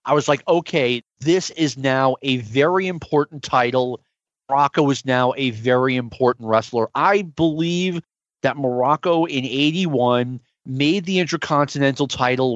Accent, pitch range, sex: American, 125-155 Hz, male